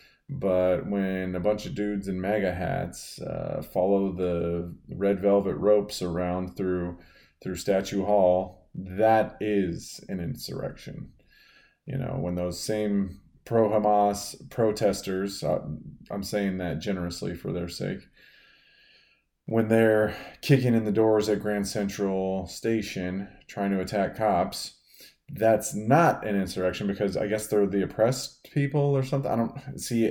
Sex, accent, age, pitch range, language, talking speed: male, American, 30-49, 90-105 Hz, English, 135 wpm